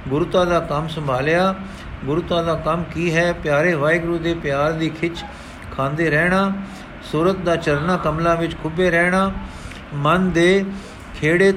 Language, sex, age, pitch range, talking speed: Punjabi, male, 50-69, 150-180 Hz, 140 wpm